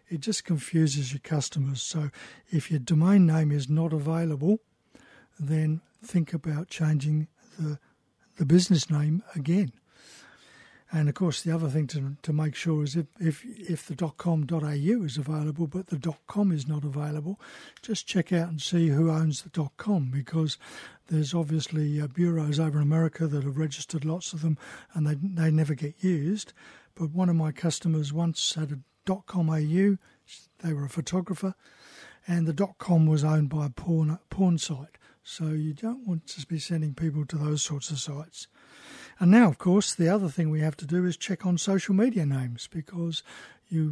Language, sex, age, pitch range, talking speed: English, male, 60-79, 150-175 Hz, 180 wpm